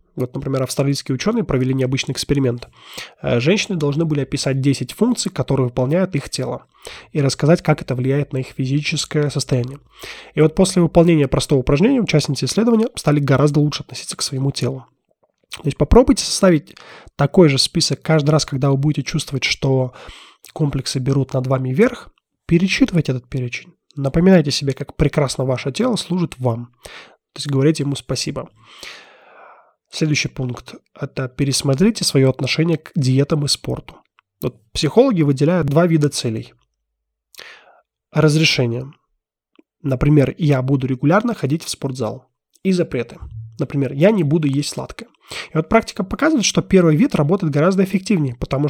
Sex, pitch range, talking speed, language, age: male, 130-165 Hz, 150 wpm, Russian, 20-39